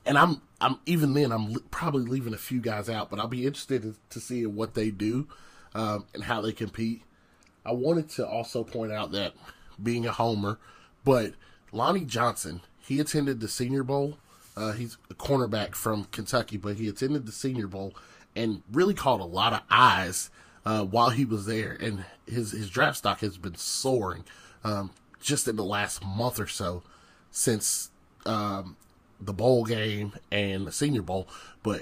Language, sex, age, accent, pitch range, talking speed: English, male, 30-49, American, 105-125 Hz, 180 wpm